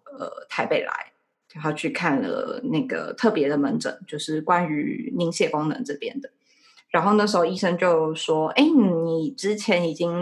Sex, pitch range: female, 160-255 Hz